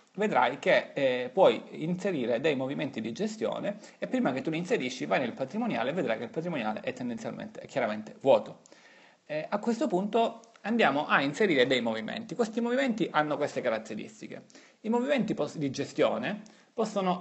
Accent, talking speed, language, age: native, 160 wpm, Italian, 30-49